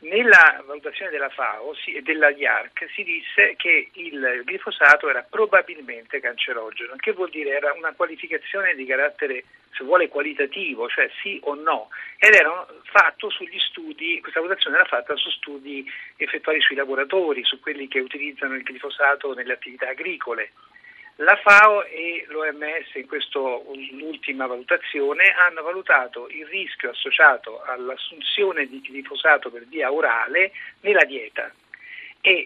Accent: native